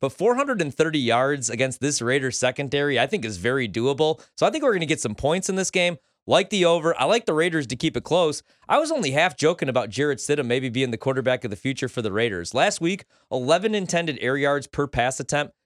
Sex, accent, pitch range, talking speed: male, American, 125-165 Hz, 240 wpm